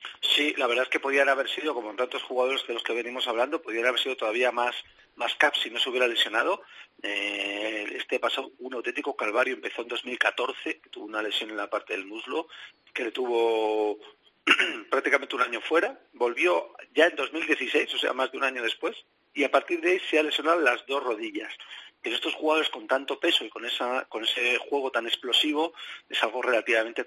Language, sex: Spanish, male